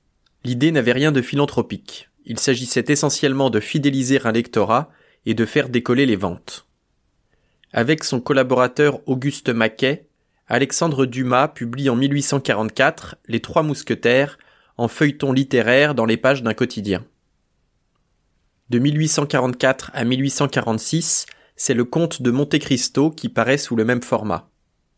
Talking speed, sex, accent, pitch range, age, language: 130 wpm, male, French, 120-145 Hz, 20-39, French